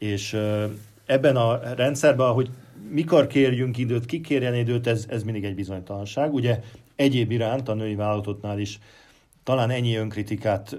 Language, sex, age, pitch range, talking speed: Hungarian, male, 50-69, 105-120 Hz, 140 wpm